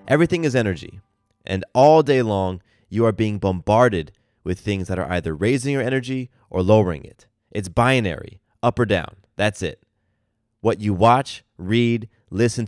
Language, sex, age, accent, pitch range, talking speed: English, male, 30-49, American, 100-125 Hz, 160 wpm